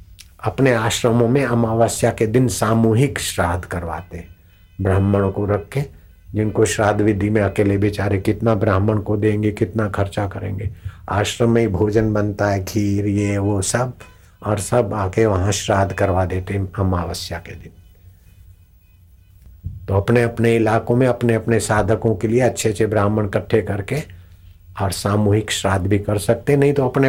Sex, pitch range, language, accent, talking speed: male, 90-110 Hz, Hindi, native, 155 wpm